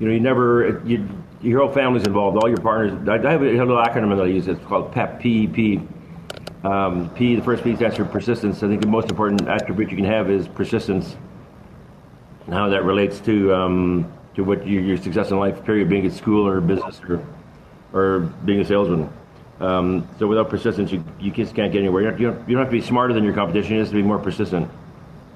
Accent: American